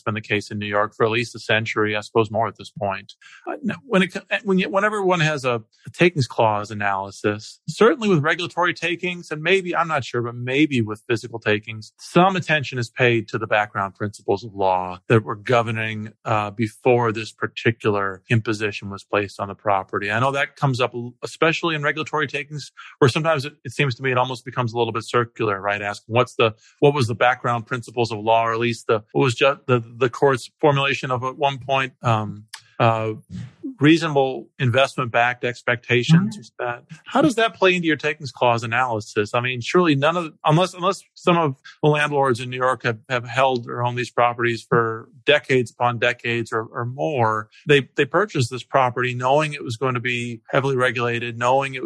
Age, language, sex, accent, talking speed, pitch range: 40-59, English, male, American, 200 wpm, 115-145 Hz